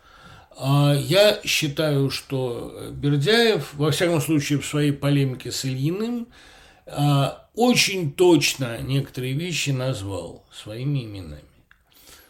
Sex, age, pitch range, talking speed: male, 60-79, 130-165 Hz, 95 wpm